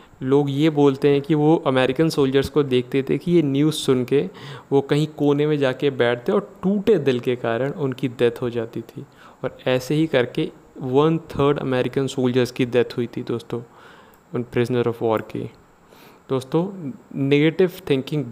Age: 20-39